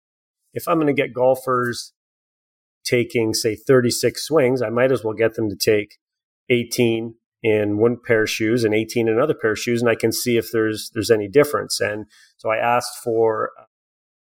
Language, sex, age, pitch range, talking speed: English, male, 30-49, 110-125 Hz, 190 wpm